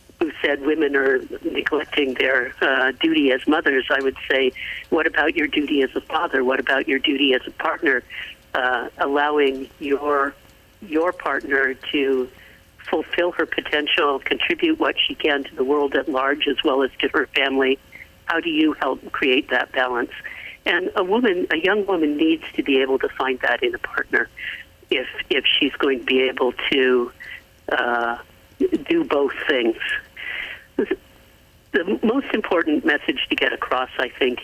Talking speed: 165 wpm